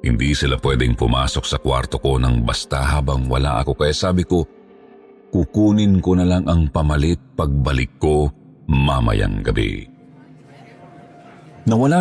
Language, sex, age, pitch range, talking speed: Filipino, male, 50-69, 70-115 Hz, 130 wpm